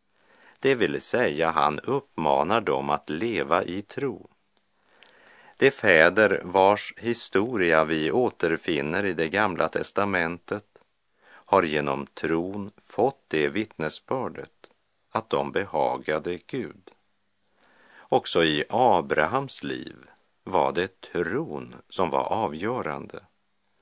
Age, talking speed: 50-69, 100 wpm